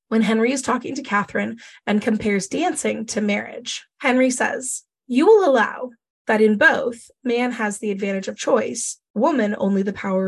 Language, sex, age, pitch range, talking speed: English, female, 20-39, 210-250 Hz, 170 wpm